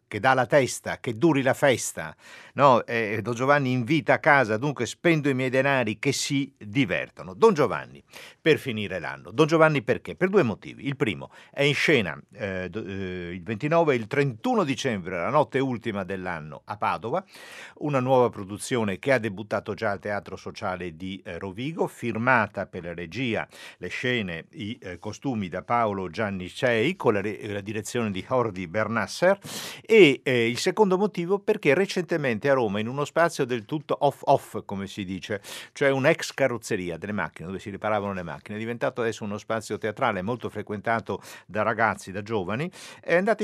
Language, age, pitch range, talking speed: Italian, 50-69, 105-140 Hz, 180 wpm